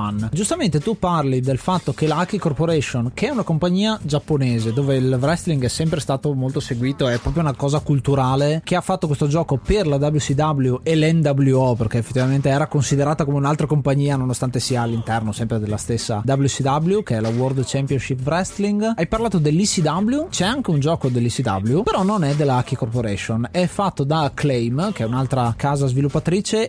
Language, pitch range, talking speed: Italian, 130-160 Hz, 180 wpm